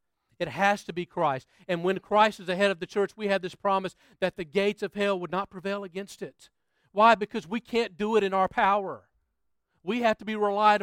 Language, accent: English, American